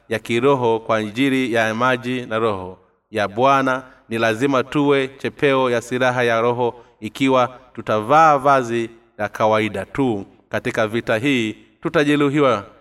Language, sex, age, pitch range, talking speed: Swahili, male, 30-49, 110-135 Hz, 130 wpm